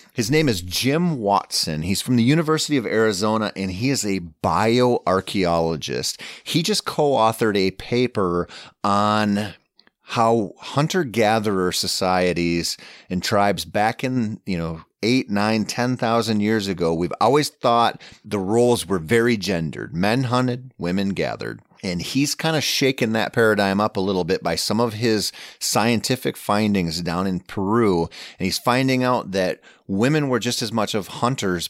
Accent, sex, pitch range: American, male, 95-120 Hz